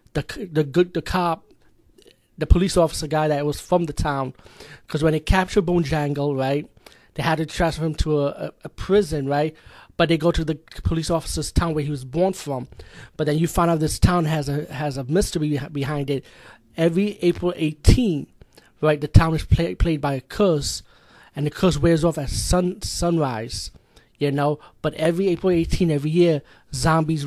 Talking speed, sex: 190 wpm, male